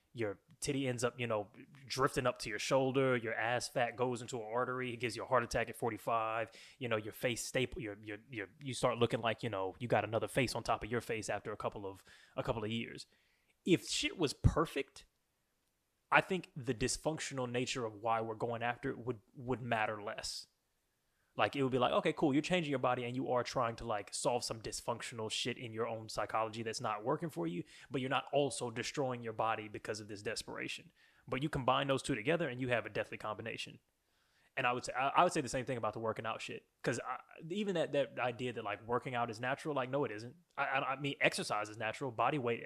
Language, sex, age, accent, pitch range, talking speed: English, male, 20-39, American, 110-135 Hz, 235 wpm